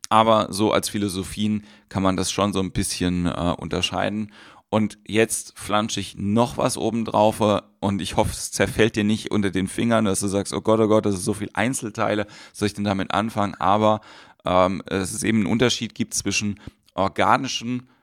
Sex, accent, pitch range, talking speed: male, German, 95-110 Hz, 190 wpm